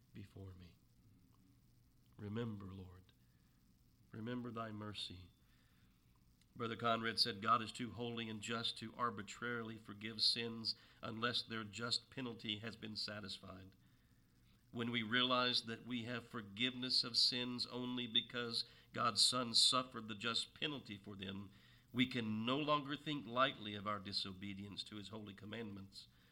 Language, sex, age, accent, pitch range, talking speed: English, male, 50-69, American, 100-125 Hz, 135 wpm